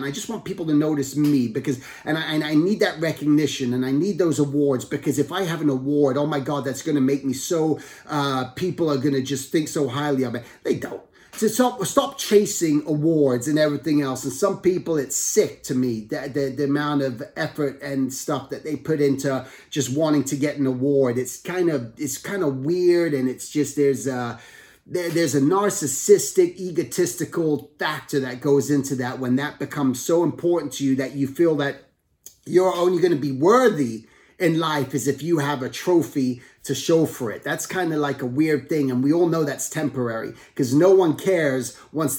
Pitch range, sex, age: 140-170 Hz, male, 30-49